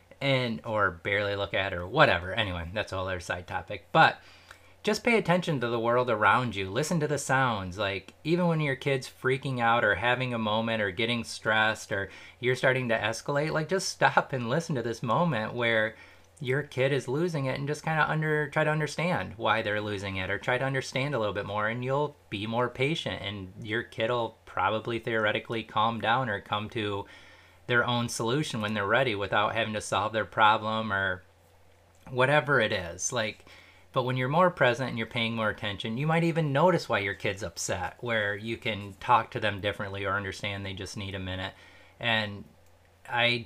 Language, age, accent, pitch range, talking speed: English, 30-49, American, 100-130 Hz, 200 wpm